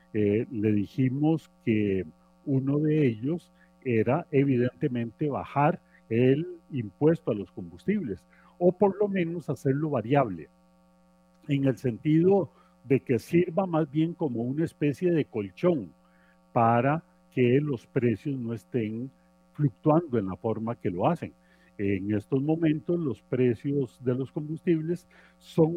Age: 40-59